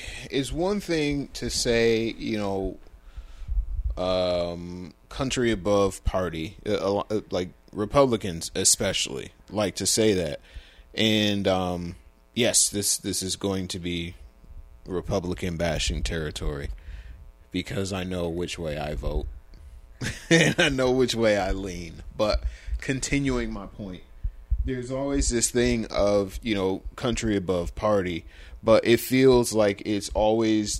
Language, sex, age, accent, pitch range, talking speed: English, male, 30-49, American, 85-110 Hz, 125 wpm